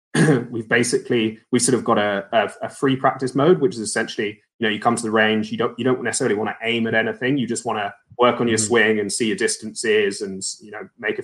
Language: English